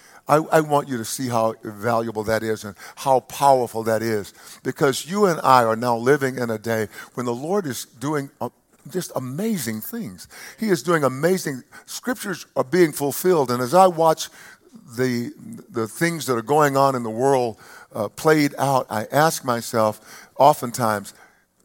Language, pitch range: English, 125-185 Hz